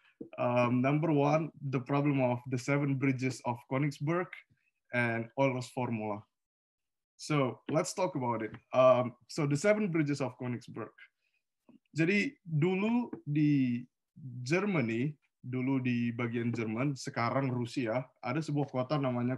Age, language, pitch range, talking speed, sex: 20-39, Indonesian, 120-140 Hz, 125 wpm, male